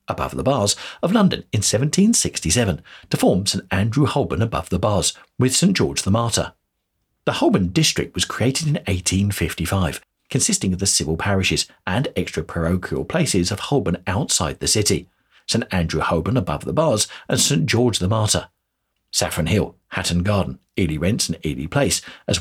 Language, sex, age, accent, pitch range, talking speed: English, male, 50-69, British, 85-115 Hz, 165 wpm